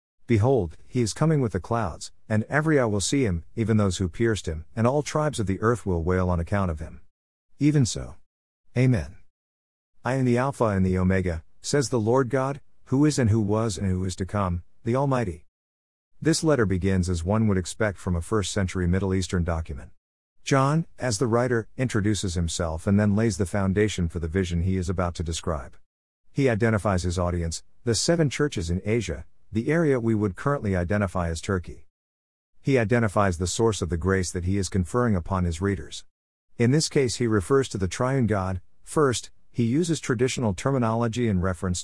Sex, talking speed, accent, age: male, 195 wpm, American, 50-69